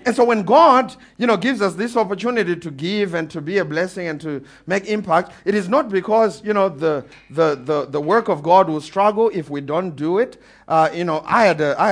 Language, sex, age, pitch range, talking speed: English, male, 50-69, 145-220 Hz, 240 wpm